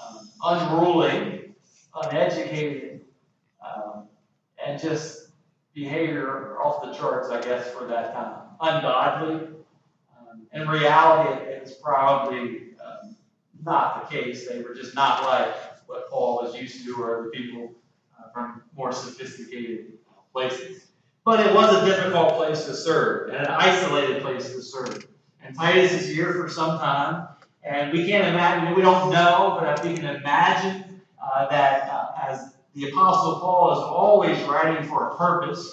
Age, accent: 40-59, American